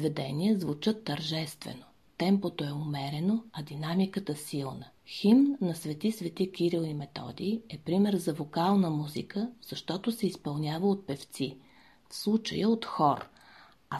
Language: Bulgarian